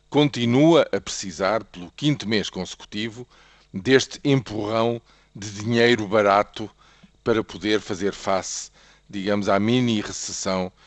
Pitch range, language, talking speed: 100-130 Hz, Portuguese, 105 wpm